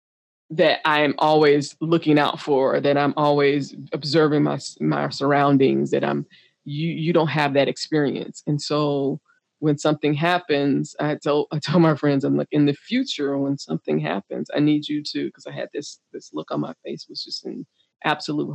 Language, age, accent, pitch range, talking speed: English, 20-39, American, 145-175 Hz, 190 wpm